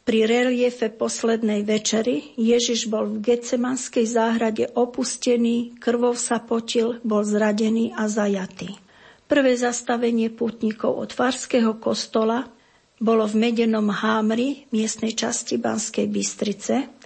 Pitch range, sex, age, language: 220-245 Hz, female, 50-69, Slovak